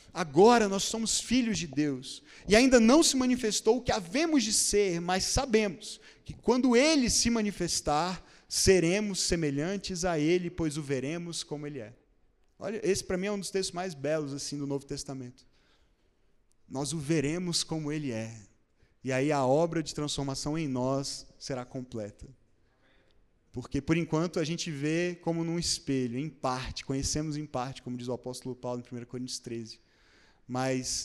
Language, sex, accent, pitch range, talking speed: Portuguese, male, Brazilian, 130-180 Hz, 165 wpm